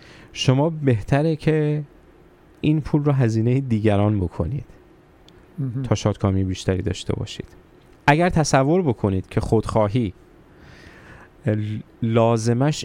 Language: Persian